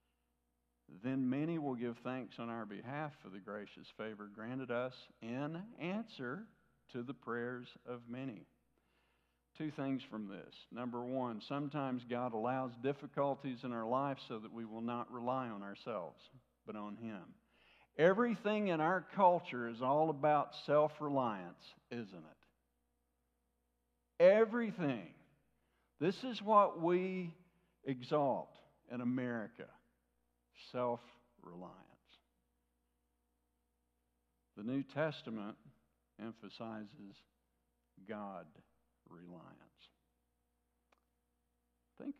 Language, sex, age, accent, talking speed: English, male, 60-79, American, 100 wpm